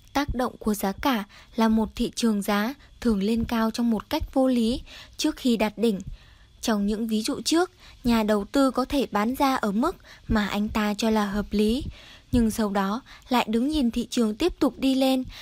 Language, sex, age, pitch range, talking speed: Vietnamese, female, 10-29, 210-260 Hz, 215 wpm